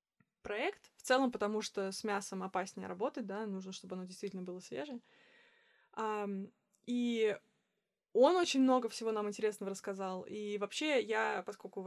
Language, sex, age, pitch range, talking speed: English, female, 20-39, 200-240 Hz, 135 wpm